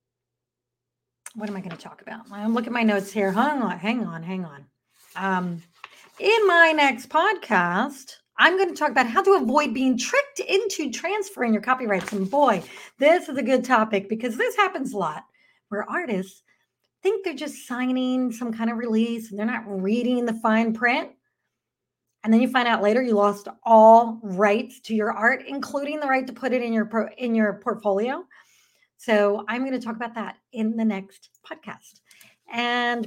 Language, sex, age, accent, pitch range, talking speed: English, female, 30-49, American, 220-290 Hz, 185 wpm